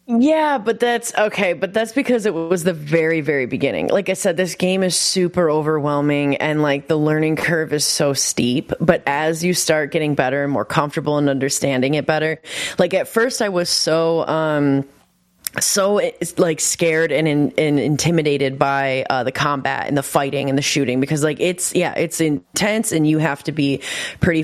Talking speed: 195 wpm